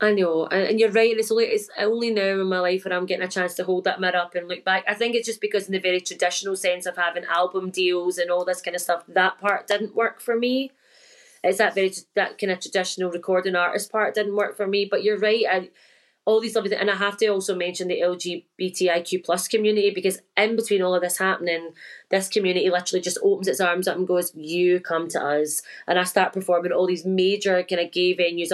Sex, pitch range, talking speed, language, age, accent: female, 180-205 Hz, 245 wpm, English, 20-39, British